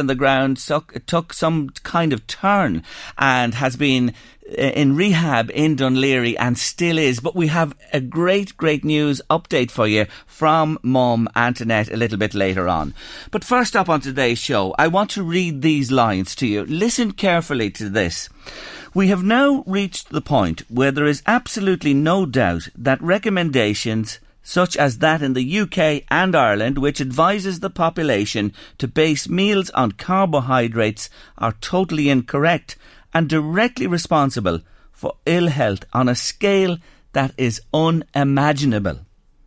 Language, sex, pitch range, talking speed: English, male, 125-175 Hz, 150 wpm